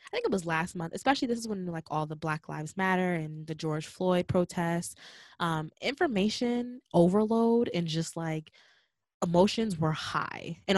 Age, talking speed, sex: 20-39, 175 wpm, female